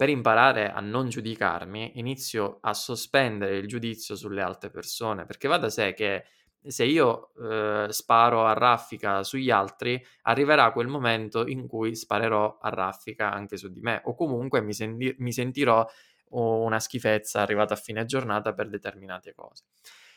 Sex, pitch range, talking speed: male, 100-120 Hz, 155 wpm